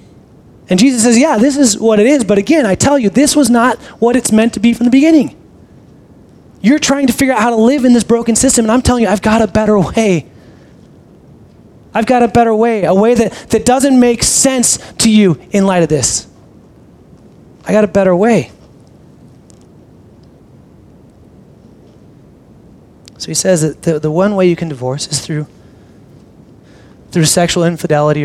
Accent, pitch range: American, 150-215 Hz